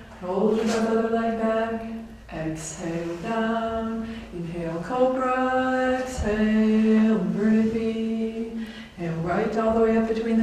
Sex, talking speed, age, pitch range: female, 110 wpm, 20-39, 185-225 Hz